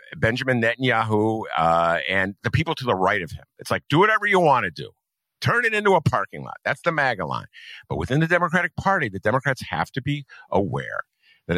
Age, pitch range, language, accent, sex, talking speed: 50-69, 100-150 Hz, English, American, male, 210 wpm